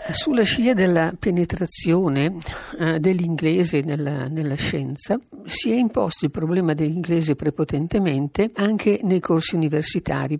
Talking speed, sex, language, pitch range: 115 wpm, female, Italian, 140-175 Hz